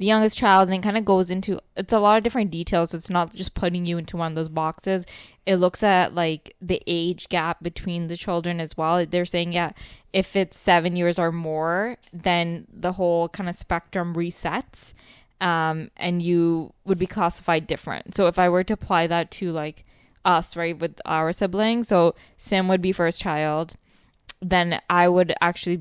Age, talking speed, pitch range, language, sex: 10-29, 195 wpm, 165-185 Hz, English, female